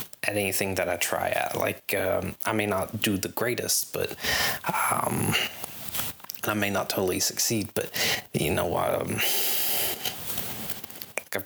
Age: 20-39